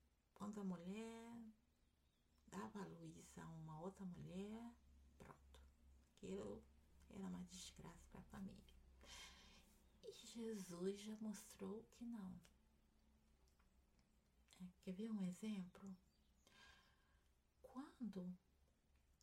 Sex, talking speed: female, 90 wpm